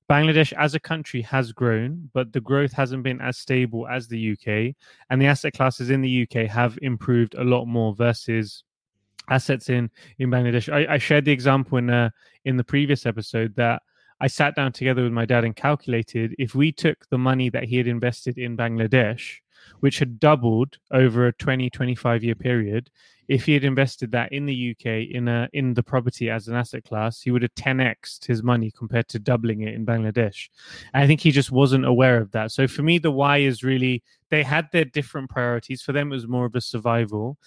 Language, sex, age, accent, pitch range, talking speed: English, male, 20-39, British, 115-135 Hz, 210 wpm